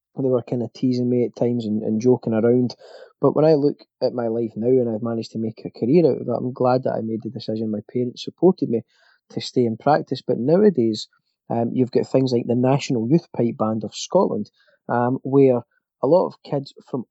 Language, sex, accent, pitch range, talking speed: English, male, British, 115-135 Hz, 230 wpm